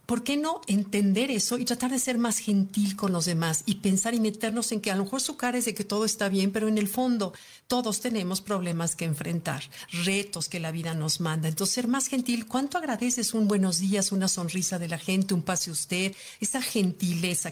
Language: Spanish